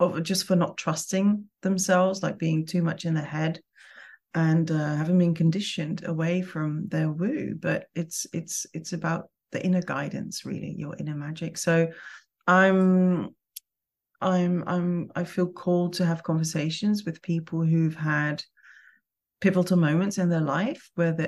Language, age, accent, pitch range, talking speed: English, 30-49, British, 160-185 Hz, 150 wpm